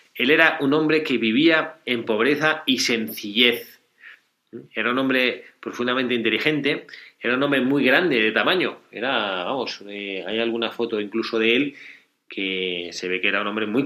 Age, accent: 30-49, Spanish